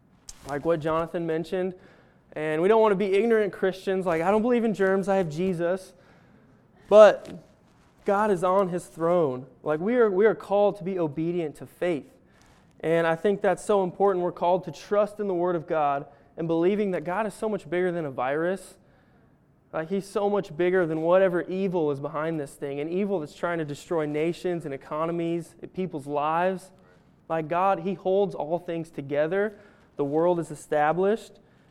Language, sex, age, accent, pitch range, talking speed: English, male, 20-39, American, 165-195 Hz, 185 wpm